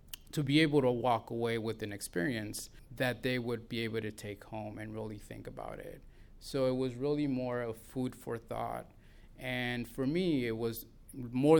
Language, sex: English, male